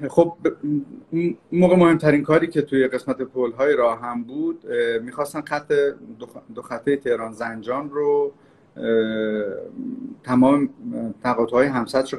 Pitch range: 125-175 Hz